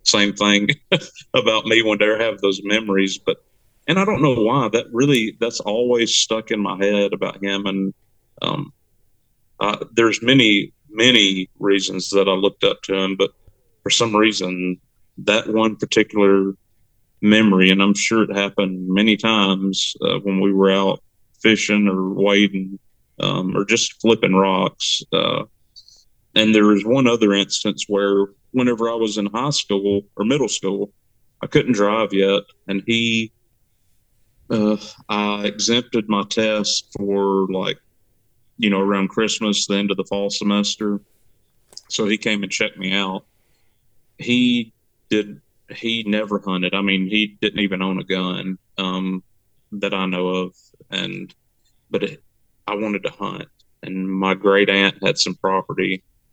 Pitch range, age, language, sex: 95-110 Hz, 40-59, English, male